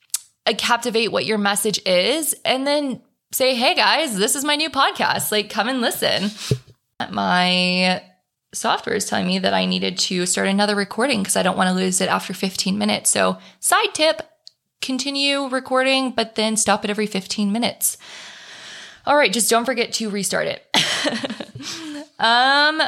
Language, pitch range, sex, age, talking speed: English, 185-260 Hz, female, 20-39, 165 wpm